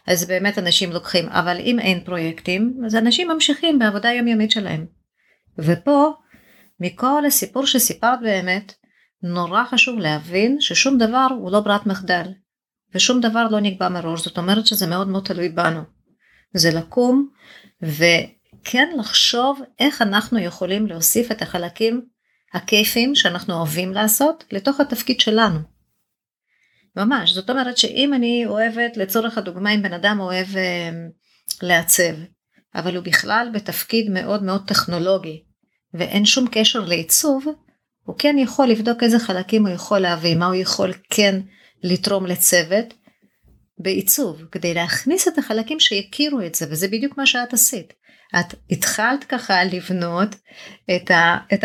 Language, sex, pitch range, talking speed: Hebrew, female, 180-240 Hz, 135 wpm